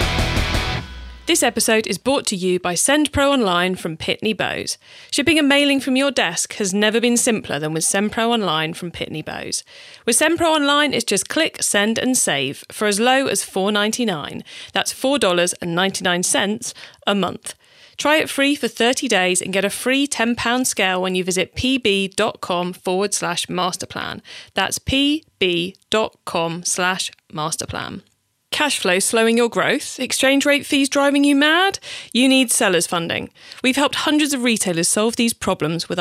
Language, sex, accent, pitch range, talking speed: English, female, British, 185-260 Hz, 155 wpm